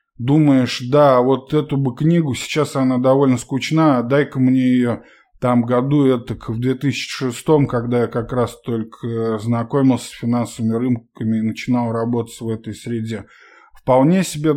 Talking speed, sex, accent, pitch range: 145 wpm, male, native, 120-145 Hz